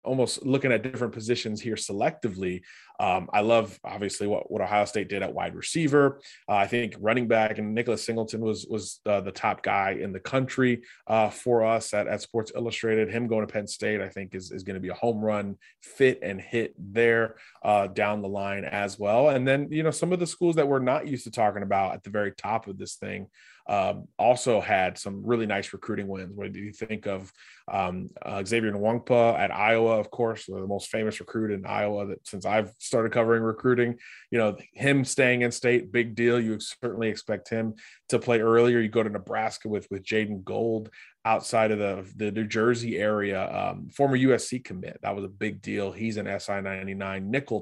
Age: 20-39